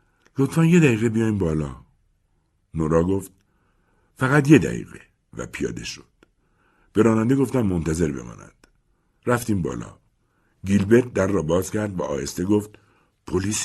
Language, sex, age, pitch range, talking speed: Persian, male, 60-79, 85-115 Hz, 125 wpm